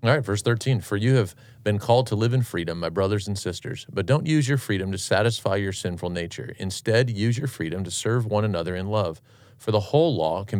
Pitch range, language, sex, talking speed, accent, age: 95-120 Hz, English, male, 240 wpm, American, 40-59